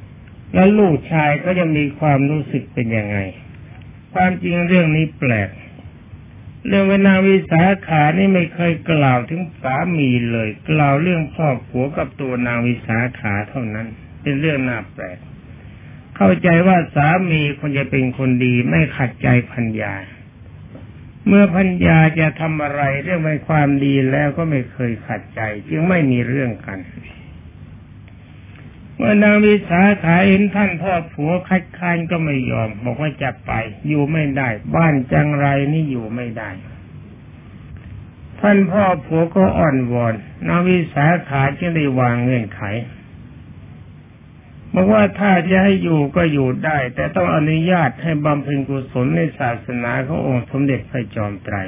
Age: 60-79